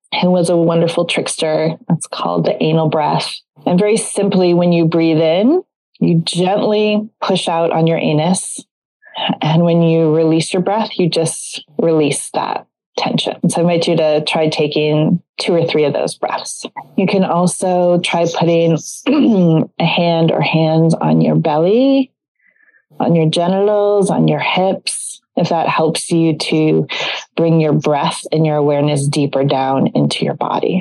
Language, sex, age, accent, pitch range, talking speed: English, female, 30-49, American, 155-185 Hz, 160 wpm